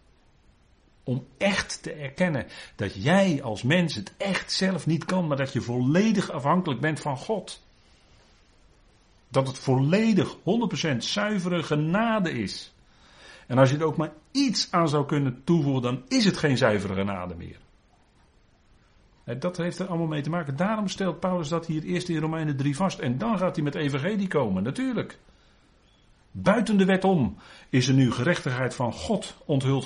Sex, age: male, 50-69